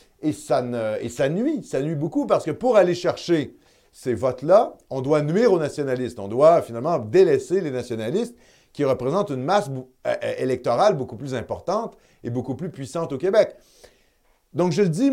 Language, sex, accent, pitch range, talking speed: French, male, French, 115-180 Hz, 185 wpm